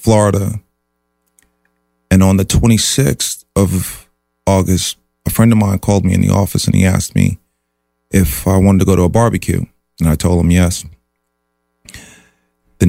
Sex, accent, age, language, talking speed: male, American, 30-49, English, 160 wpm